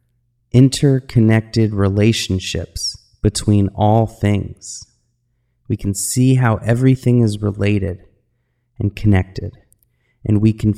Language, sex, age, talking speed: English, male, 30-49, 95 wpm